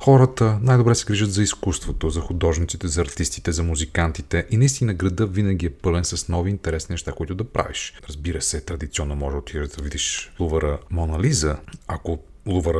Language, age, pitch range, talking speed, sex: Bulgarian, 30-49, 80-120 Hz, 170 wpm, male